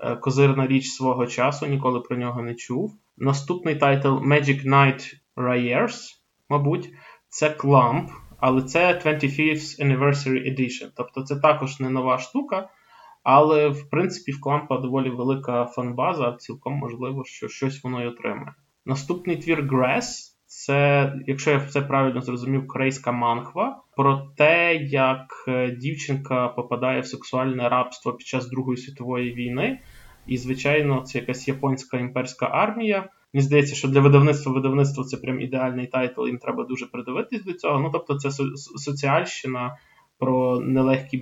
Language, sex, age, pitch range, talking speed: Ukrainian, male, 20-39, 125-145 Hz, 140 wpm